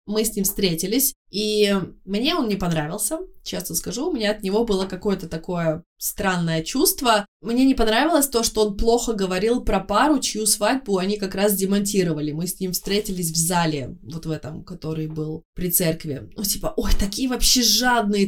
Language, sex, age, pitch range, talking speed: Russian, female, 20-39, 185-225 Hz, 180 wpm